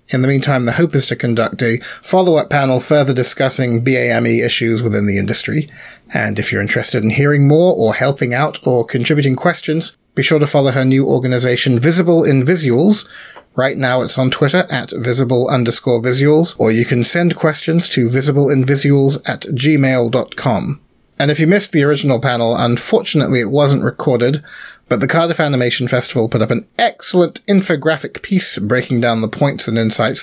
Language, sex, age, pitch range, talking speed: English, male, 30-49, 120-155 Hz, 175 wpm